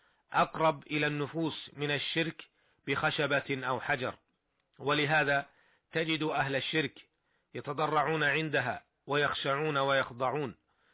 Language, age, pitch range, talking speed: Arabic, 40-59, 140-155 Hz, 90 wpm